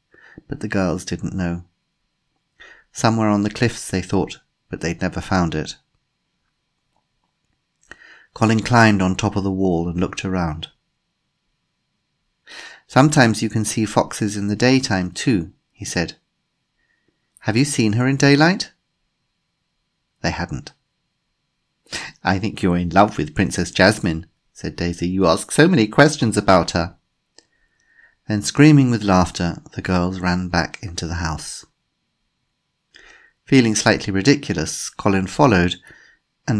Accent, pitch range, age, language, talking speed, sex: British, 90-120 Hz, 40-59, English, 130 wpm, male